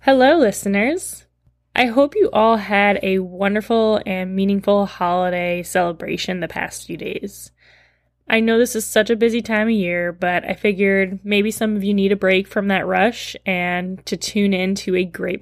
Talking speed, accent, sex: 185 wpm, American, female